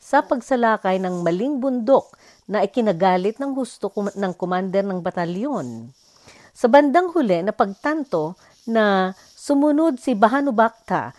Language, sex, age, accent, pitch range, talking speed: Filipino, female, 50-69, native, 185-250 Hz, 125 wpm